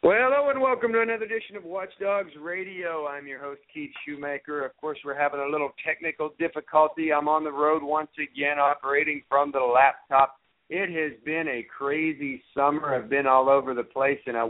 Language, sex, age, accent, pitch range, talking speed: English, male, 50-69, American, 120-150 Hz, 200 wpm